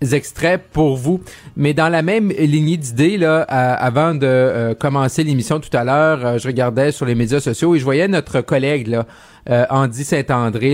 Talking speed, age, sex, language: 195 wpm, 30-49, male, French